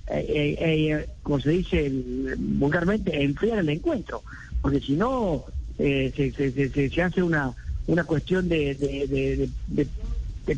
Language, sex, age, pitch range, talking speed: Spanish, male, 50-69, 130-170 Hz, 160 wpm